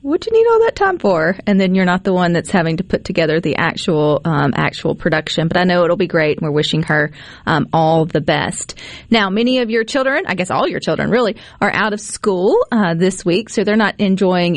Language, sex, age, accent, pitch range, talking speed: English, female, 30-49, American, 165-230 Hz, 245 wpm